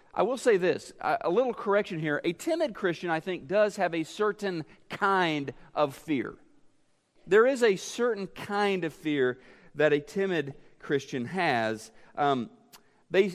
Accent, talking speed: American, 155 wpm